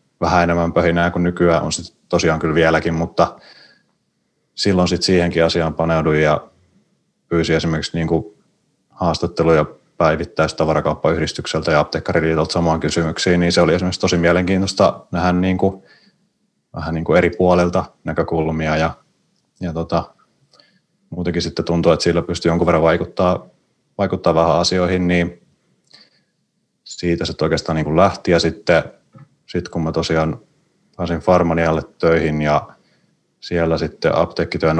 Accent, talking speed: native, 130 wpm